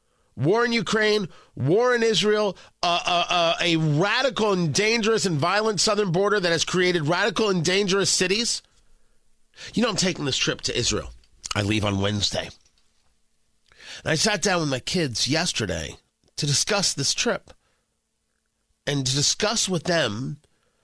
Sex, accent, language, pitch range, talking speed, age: male, American, English, 115-185 Hz, 155 wpm, 40-59